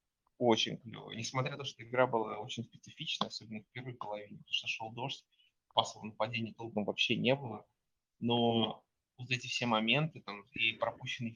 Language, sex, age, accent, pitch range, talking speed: Russian, male, 20-39, native, 110-125 Hz, 170 wpm